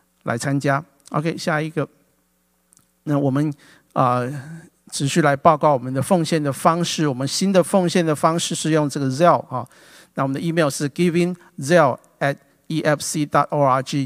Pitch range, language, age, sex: 130-165 Hz, Chinese, 50-69, male